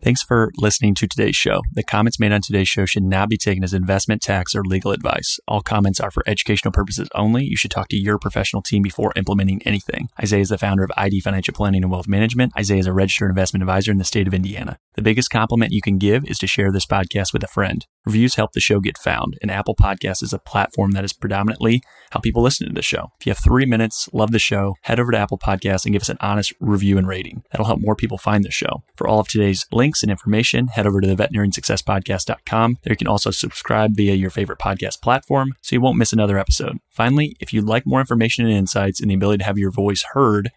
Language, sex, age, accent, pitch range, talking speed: English, male, 30-49, American, 100-115 Hz, 250 wpm